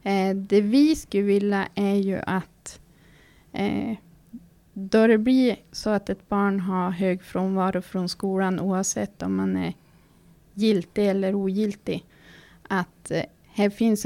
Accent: native